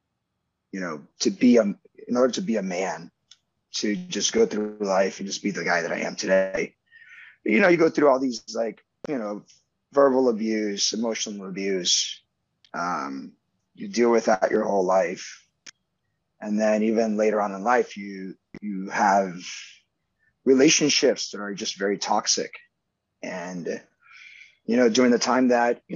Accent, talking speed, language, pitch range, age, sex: American, 165 wpm, English, 100-135 Hz, 30-49, male